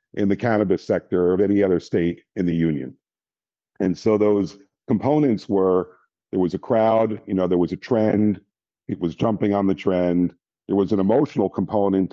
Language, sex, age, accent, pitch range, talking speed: English, male, 50-69, American, 90-105 Hz, 190 wpm